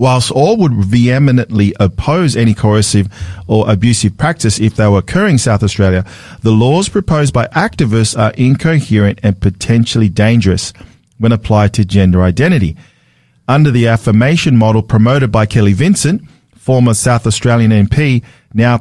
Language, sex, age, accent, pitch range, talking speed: English, male, 40-59, Australian, 110-140 Hz, 145 wpm